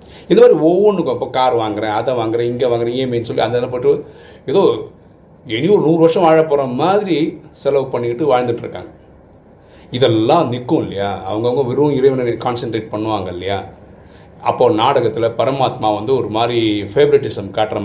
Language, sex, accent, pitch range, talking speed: Tamil, male, native, 105-125 Hz, 110 wpm